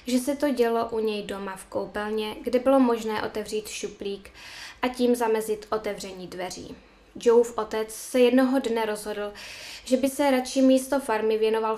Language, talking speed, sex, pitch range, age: Czech, 170 wpm, female, 205-255 Hz, 10-29